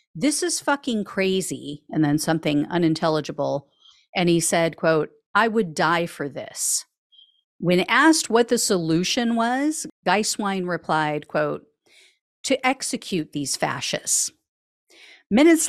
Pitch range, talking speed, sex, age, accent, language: 165-235 Hz, 120 wpm, female, 50-69, American, English